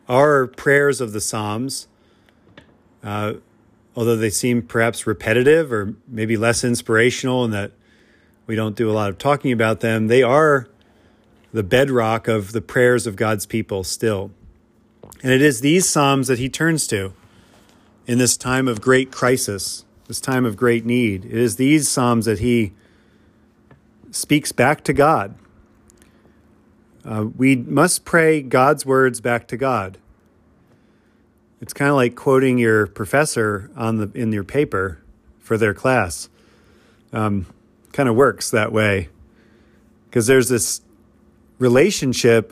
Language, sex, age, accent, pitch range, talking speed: English, male, 40-59, American, 110-130 Hz, 145 wpm